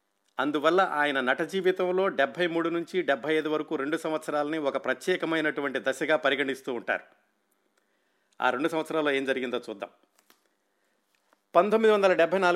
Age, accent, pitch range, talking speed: 50-69, native, 145-175 Hz, 105 wpm